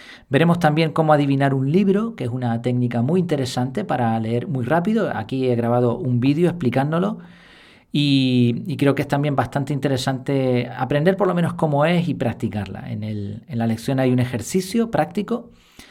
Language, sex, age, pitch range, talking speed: Spanish, male, 40-59, 120-155 Hz, 175 wpm